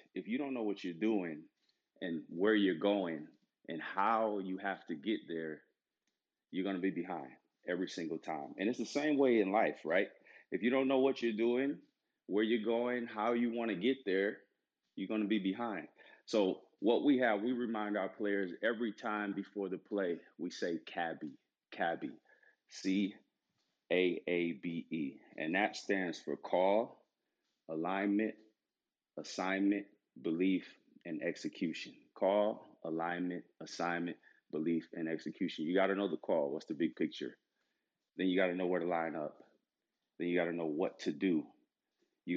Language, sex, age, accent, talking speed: English, male, 30-49, American, 165 wpm